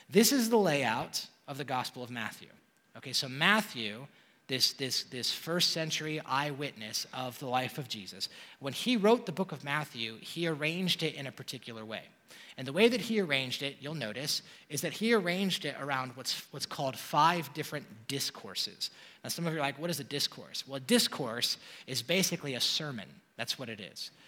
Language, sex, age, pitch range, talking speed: English, male, 30-49, 125-175 Hz, 195 wpm